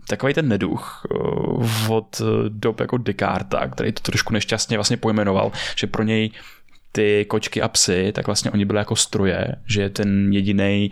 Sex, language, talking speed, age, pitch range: male, Czech, 165 wpm, 10-29, 105-125 Hz